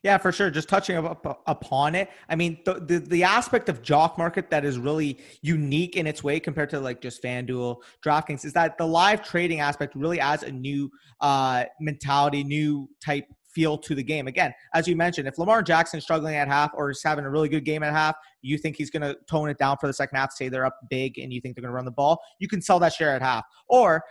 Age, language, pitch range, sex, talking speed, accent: 30-49, English, 140-170 Hz, male, 250 wpm, American